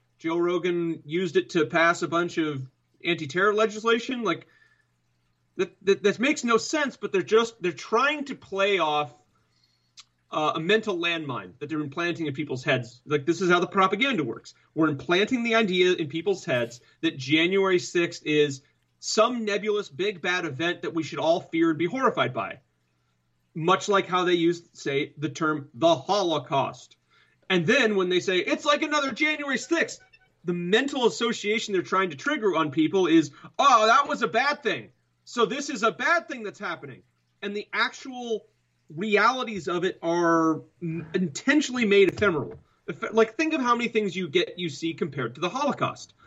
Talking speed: 175 wpm